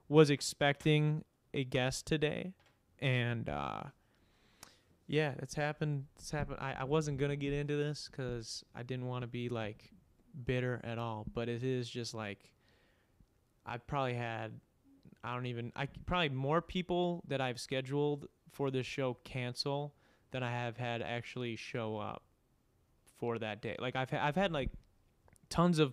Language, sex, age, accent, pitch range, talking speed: English, male, 20-39, American, 115-140 Hz, 155 wpm